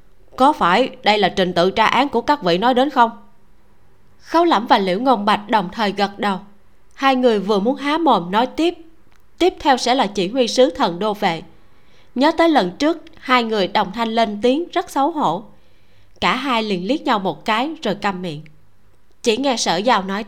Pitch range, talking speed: 180-250 Hz, 205 wpm